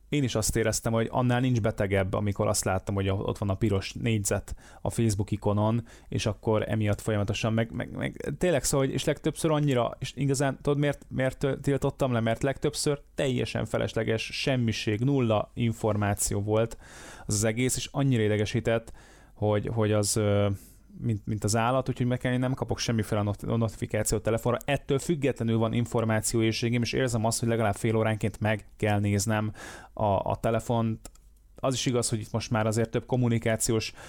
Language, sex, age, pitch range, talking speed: Hungarian, male, 20-39, 110-125 Hz, 170 wpm